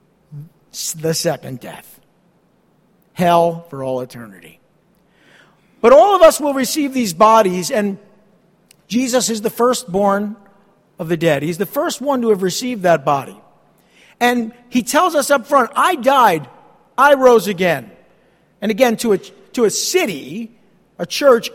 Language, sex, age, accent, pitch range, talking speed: English, male, 50-69, American, 190-255 Hz, 145 wpm